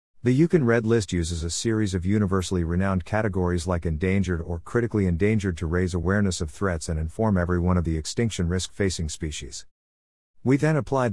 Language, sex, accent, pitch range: English, male, American, 90-115 Hz